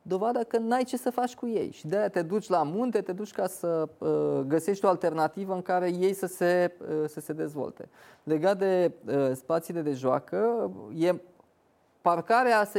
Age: 20-39